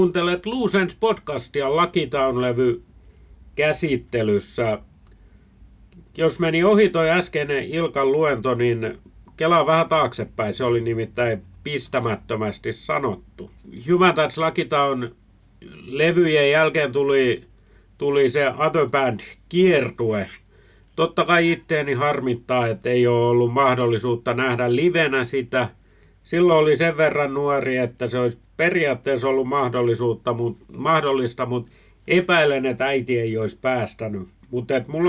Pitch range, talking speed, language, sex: 110-155 Hz, 110 wpm, Finnish, male